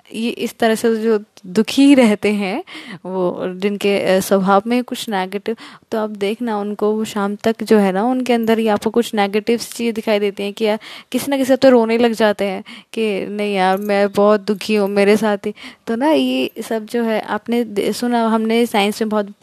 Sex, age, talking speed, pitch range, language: female, 20-39, 200 wpm, 195-230 Hz, Hindi